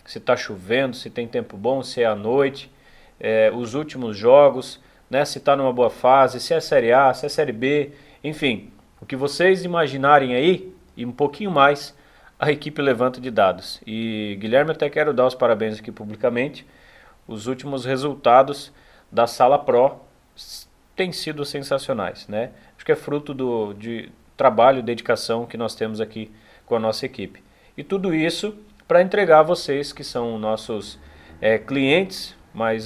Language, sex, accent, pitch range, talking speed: Portuguese, male, Brazilian, 115-150 Hz, 170 wpm